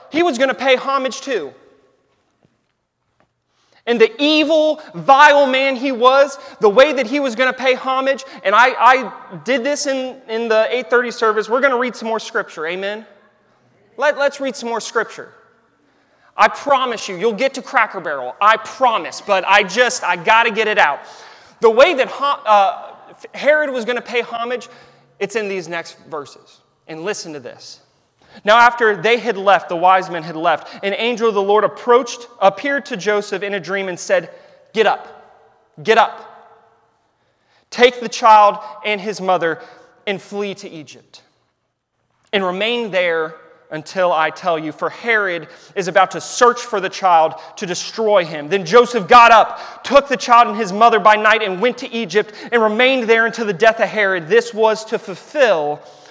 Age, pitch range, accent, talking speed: 30-49, 200-255 Hz, American, 180 wpm